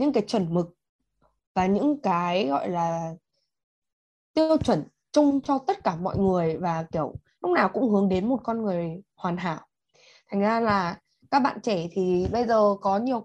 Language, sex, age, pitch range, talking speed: Vietnamese, female, 20-39, 180-260 Hz, 180 wpm